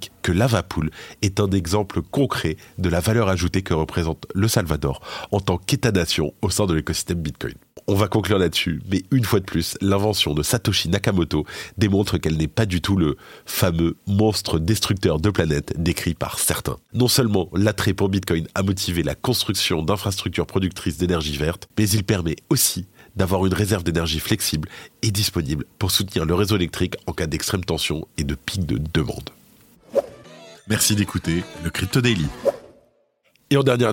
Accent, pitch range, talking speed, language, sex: French, 85-105 Hz, 170 wpm, French, male